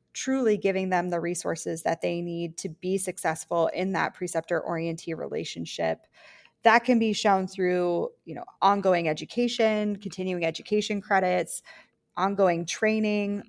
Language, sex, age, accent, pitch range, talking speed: English, female, 20-39, American, 185-225 Hz, 135 wpm